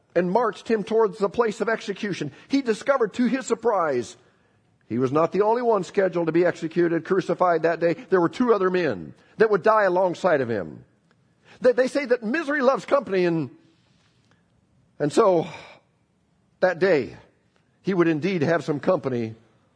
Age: 50-69